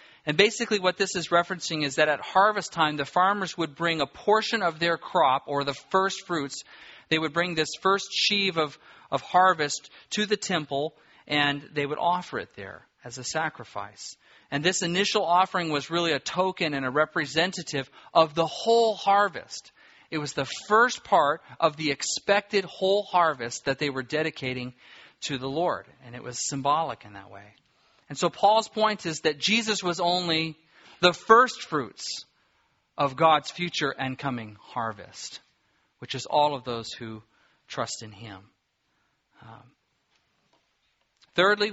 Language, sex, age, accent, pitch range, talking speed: English, male, 40-59, American, 135-180 Hz, 165 wpm